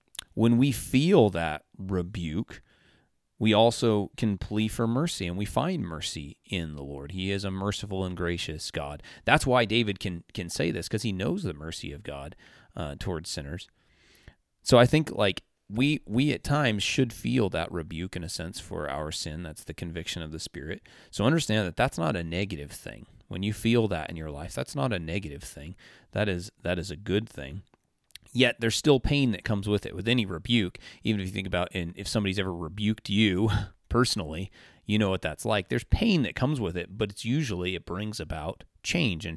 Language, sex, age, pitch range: English, male, 30-49, 85-110 Hz